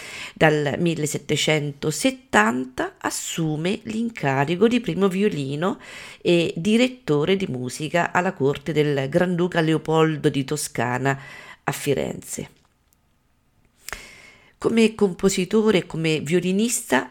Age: 40-59